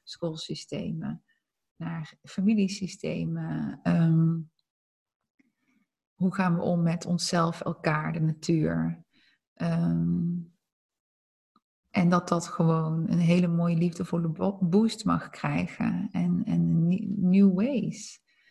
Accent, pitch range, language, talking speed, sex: Dutch, 165-185 Hz, Dutch, 95 wpm, female